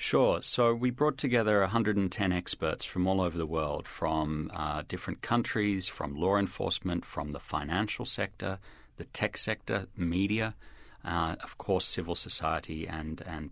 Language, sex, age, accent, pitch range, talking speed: English, male, 40-59, Australian, 80-100 Hz, 150 wpm